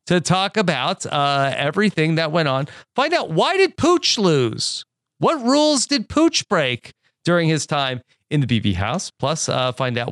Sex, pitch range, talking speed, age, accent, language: male, 130-195 Hz, 180 wpm, 40-59, American, English